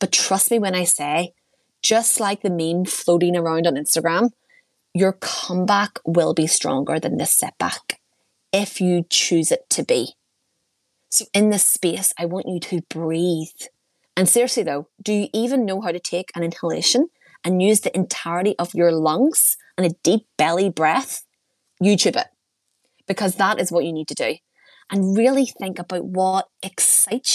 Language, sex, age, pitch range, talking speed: English, female, 20-39, 170-225 Hz, 170 wpm